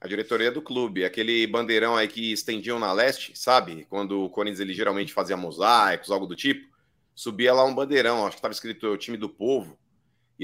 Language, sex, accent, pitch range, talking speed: Portuguese, male, Brazilian, 105-145 Hz, 200 wpm